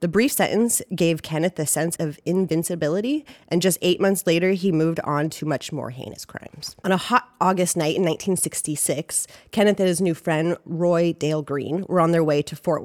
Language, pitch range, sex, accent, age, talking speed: English, 155-190 Hz, female, American, 30-49, 200 wpm